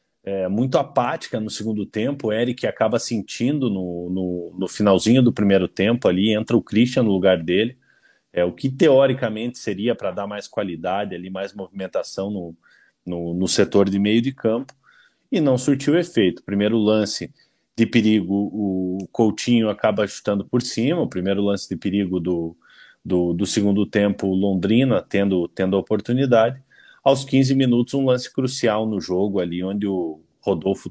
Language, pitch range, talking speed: Portuguese, 95-115 Hz, 155 wpm